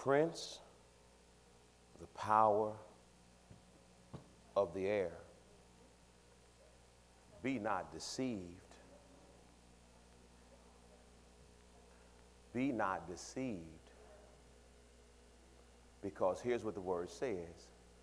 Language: English